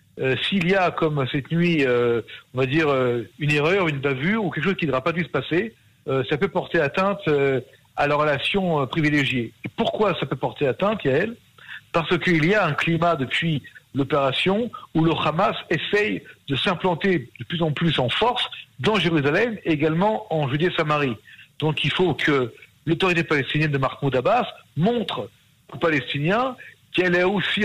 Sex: male